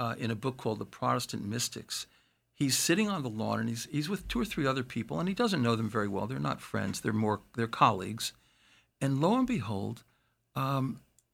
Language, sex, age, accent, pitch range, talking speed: English, male, 60-79, American, 125-170 Hz, 215 wpm